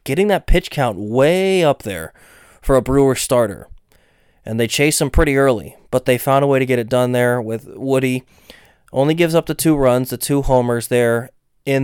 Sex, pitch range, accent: male, 125-145 Hz, American